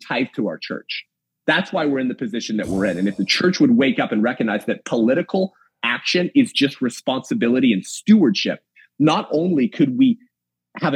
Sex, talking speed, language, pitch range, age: male, 190 wpm, English, 105-160 Hz, 30-49